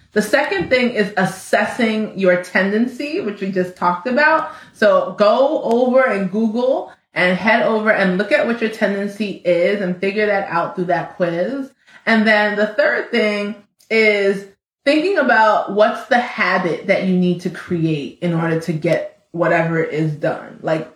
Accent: American